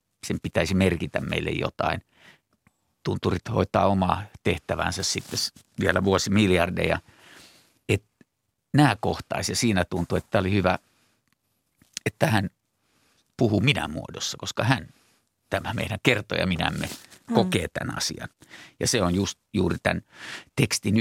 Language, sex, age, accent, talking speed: Finnish, male, 50-69, native, 125 wpm